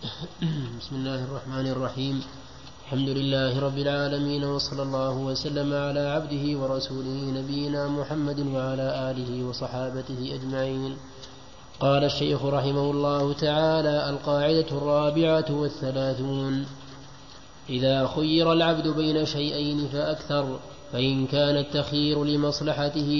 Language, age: Arabic, 20-39